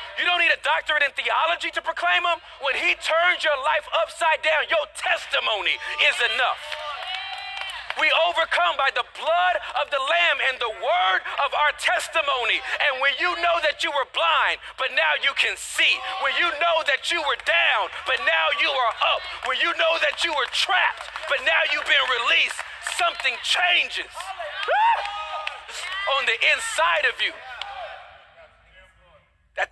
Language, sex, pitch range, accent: English, male, 260-335 Hz, American